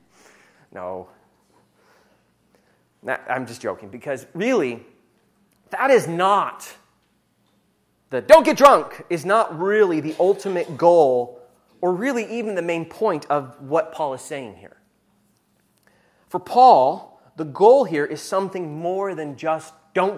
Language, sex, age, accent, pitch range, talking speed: English, male, 30-49, American, 155-225 Hz, 130 wpm